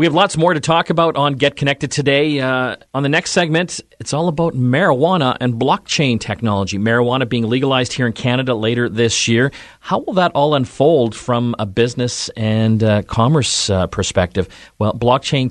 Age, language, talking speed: 40-59, English, 180 wpm